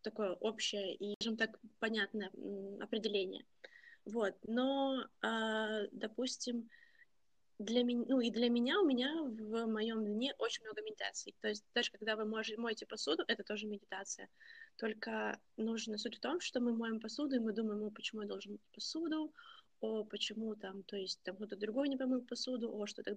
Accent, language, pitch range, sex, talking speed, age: native, Russian, 205-240 Hz, female, 175 wpm, 20-39